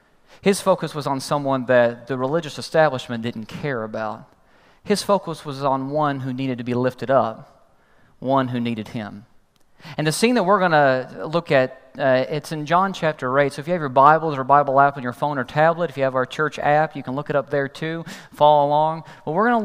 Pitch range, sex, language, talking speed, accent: 135-175 Hz, male, English, 230 wpm, American